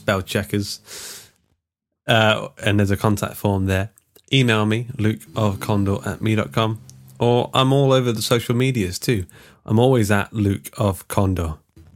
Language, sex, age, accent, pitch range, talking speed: English, male, 30-49, British, 95-115 Hz, 130 wpm